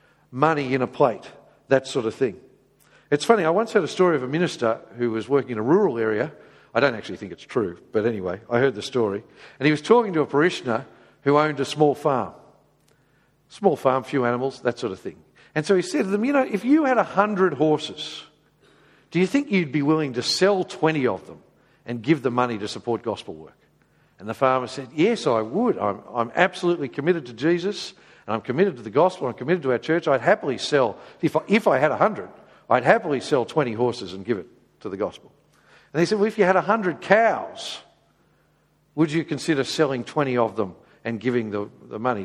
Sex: male